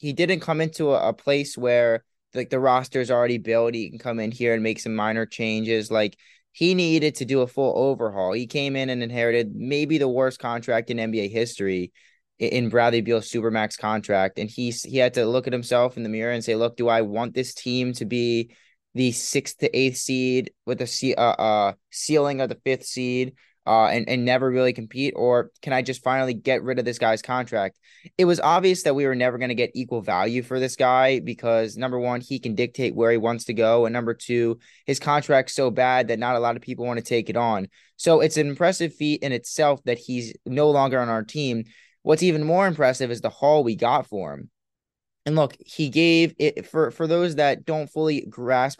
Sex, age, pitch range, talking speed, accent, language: male, 20-39, 115-140 Hz, 225 wpm, American, English